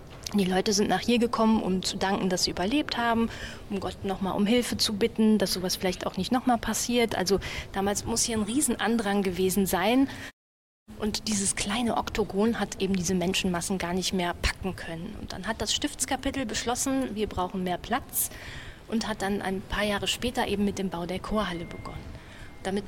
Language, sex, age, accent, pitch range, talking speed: German, female, 30-49, German, 185-230 Hz, 190 wpm